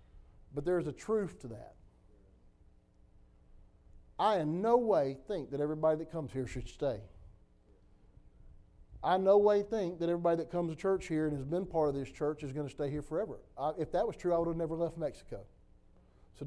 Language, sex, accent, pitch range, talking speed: English, male, American, 130-195 Hz, 195 wpm